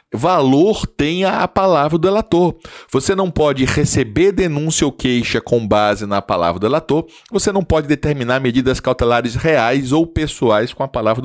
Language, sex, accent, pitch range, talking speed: Portuguese, male, Brazilian, 120-175 Hz, 165 wpm